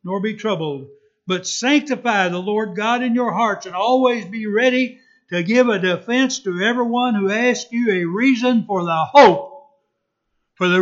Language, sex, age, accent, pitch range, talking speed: English, male, 60-79, American, 190-240 Hz, 170 wpm